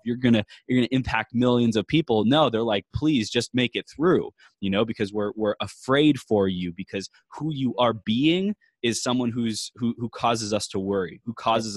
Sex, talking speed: male, 215 wpm